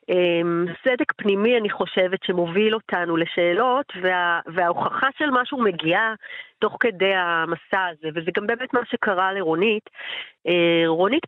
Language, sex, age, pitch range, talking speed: Hebrew, female, 40-59, 175-255 Hz, 120 wpm